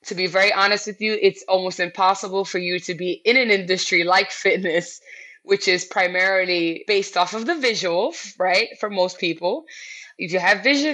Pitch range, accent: 175-235 Hz, American